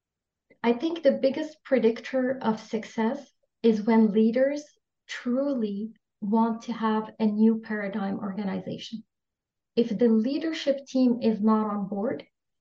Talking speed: 125 wpm